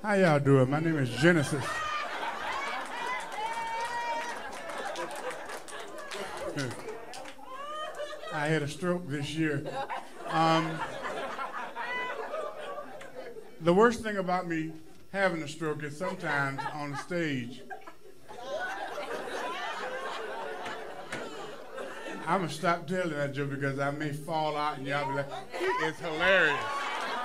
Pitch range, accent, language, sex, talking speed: 140-200 Hz, American, English, male, 95 wpm